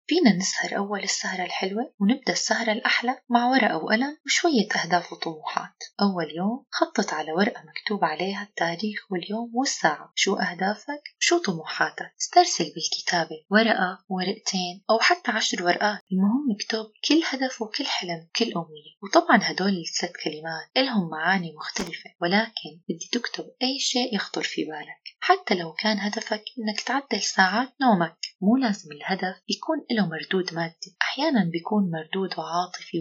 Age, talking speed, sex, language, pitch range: 20-39, 140 wpm, female, Arabic, 180-245 Hz